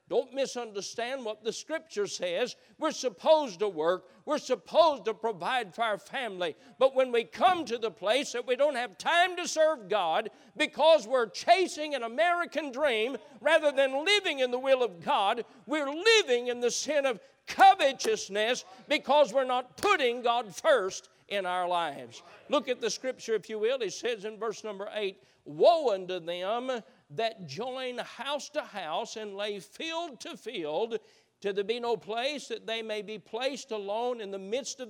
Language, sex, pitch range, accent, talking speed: English, male, 215-290 Hz, American, 175 wpm